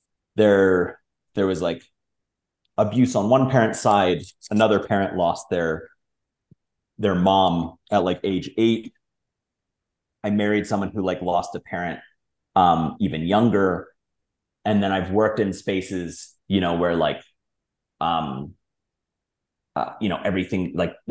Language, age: English, 30-49